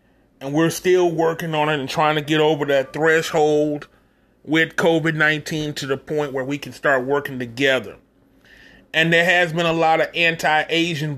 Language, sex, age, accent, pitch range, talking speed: English, male, 30-49, American, 145-170 Hz, 170 wpm